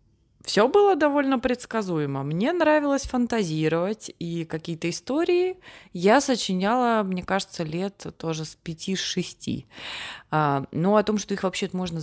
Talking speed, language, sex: 125 wpm, Russian, female